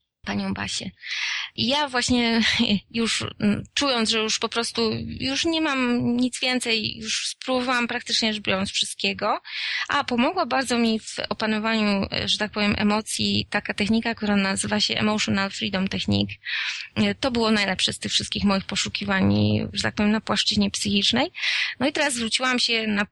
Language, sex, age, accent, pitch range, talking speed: Polish, female, 20-39, native, 195-230 Hz, 155 wpm